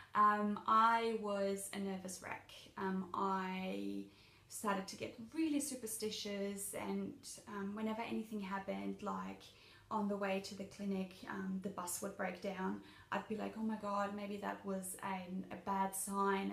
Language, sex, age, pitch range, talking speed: English, female, 20-39, 180-205 Hz, 160 wpm